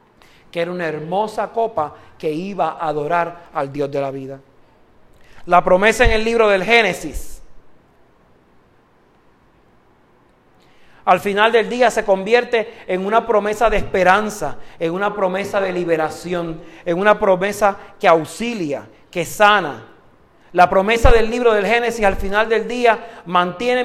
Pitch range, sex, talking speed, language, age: 180-245 Hz, male, 140 wpm, Spanish, 40-59